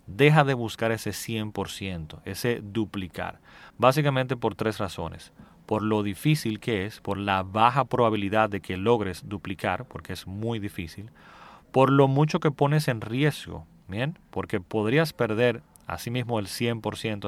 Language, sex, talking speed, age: Spanish, male, 150 wpm, 30-49